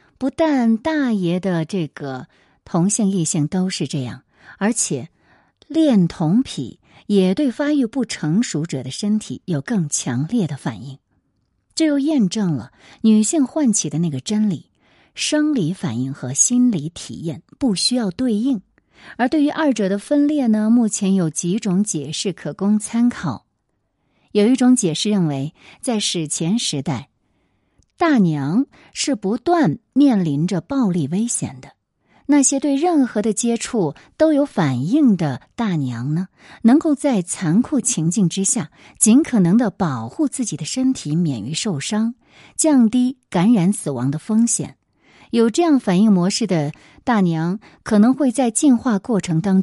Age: 50-69